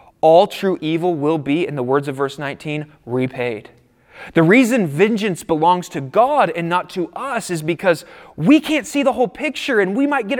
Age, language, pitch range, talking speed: 30-49, English, 140-190 Hz, 195 wpm